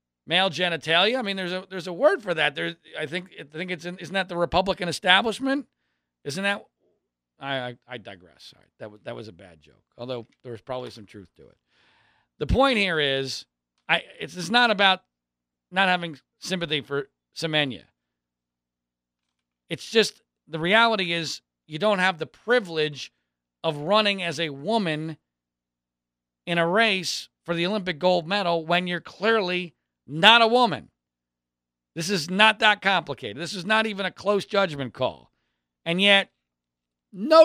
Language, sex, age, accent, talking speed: English, male, 40-59, American, 165 wpm